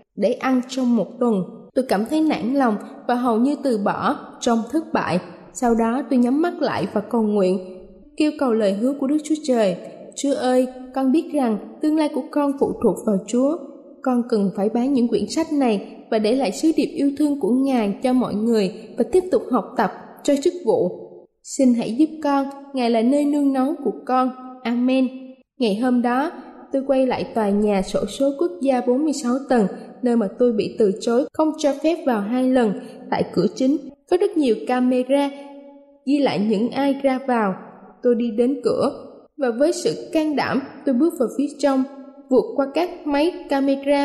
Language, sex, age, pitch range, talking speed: Vietnamese, female, 20-39, 230-280 Hz, 200 wpm